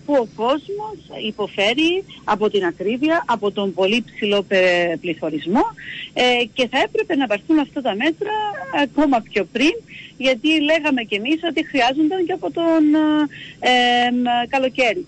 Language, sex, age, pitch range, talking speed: Greek, female, 40-59, 200-285 Hz, 140 wpm